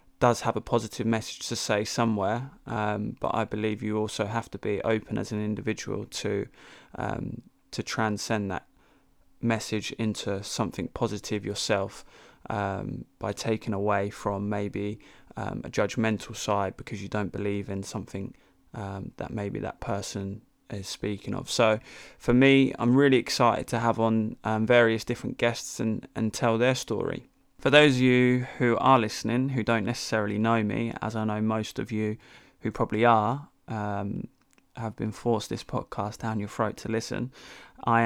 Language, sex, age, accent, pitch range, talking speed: English, male, 20-39, British, 105-120 Hz, 165 wpm